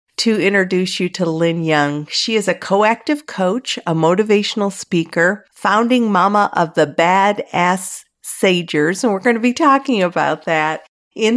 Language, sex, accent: English, female, American